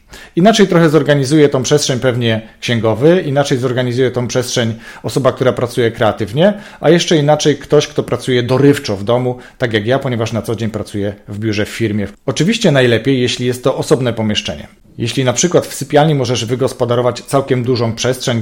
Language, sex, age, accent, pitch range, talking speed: Polish, male, 40-59, native, 110-140 Hz, 175 wpm